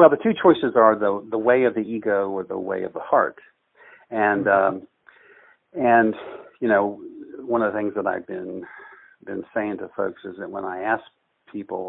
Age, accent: 50-69, American